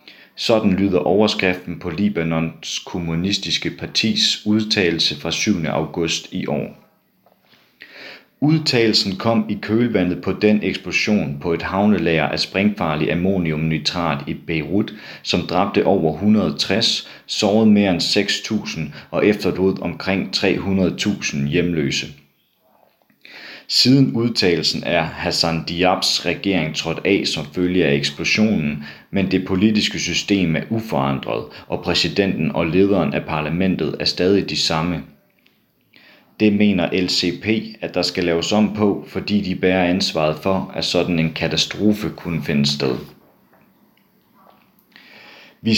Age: 40-59